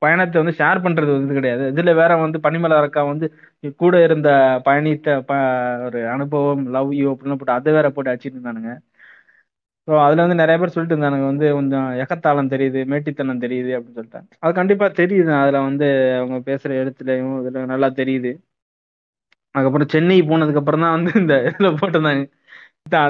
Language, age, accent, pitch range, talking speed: Tamil, 20-39, native, 130-155 Hz, 155 wpm